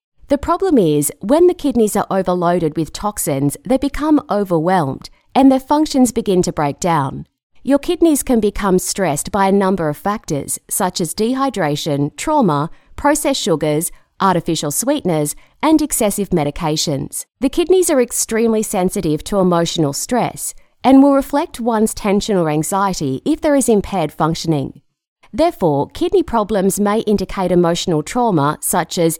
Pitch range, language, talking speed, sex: 160-260 Hz, English, 145 wpm, female